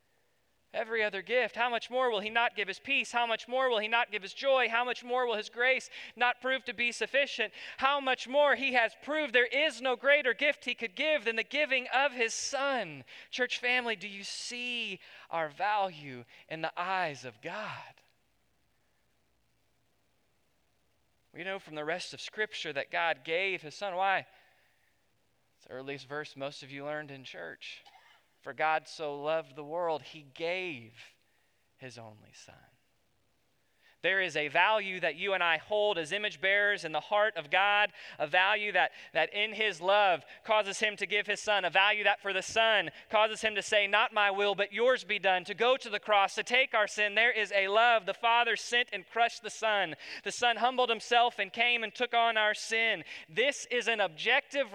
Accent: American